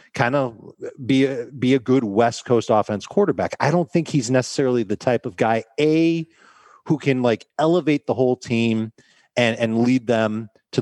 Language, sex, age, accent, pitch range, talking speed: English, male, 40-59, American, 110-140 Hz, 185 wpm